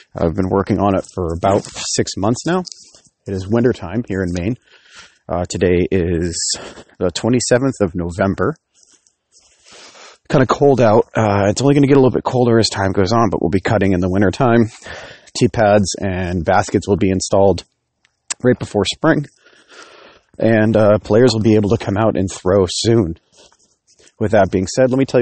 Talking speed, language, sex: 185 wpm, English, male